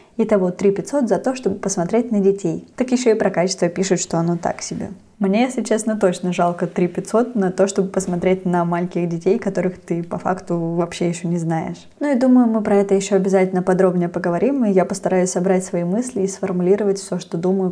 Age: 20-39